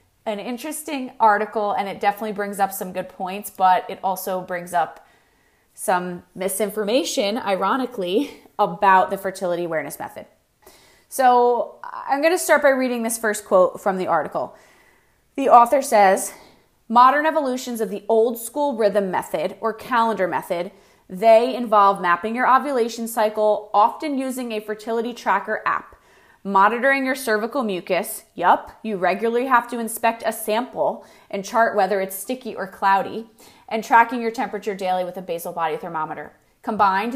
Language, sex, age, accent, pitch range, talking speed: English, female, 30-49, American, 195-240 Hz, 150 wpm